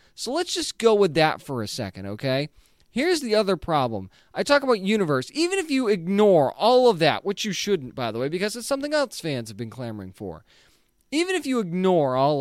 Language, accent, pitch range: English, American, 155-250 Hz